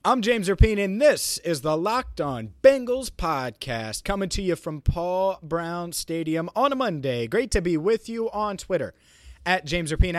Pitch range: 130-175 Hz